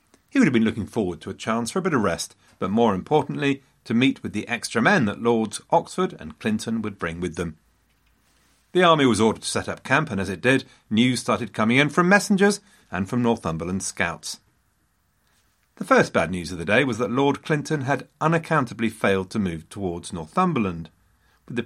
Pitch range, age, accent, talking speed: 105-165 Hz, 40-59, British, 205 wpm